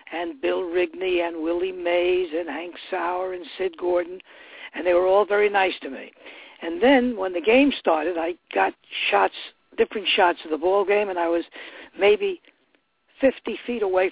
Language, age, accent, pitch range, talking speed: English, 60-79, American, 175-220 Hz, 180 wpm